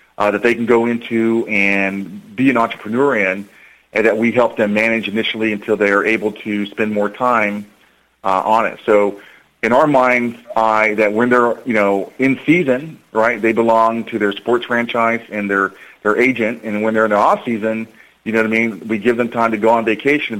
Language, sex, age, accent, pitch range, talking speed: English, male, 40-59, American, 105-115 Hz, 210 wpm